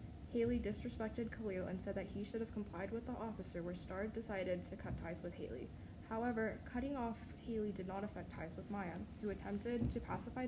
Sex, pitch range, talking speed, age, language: female, 135-225 Hz, 200 wpm, 10-29, English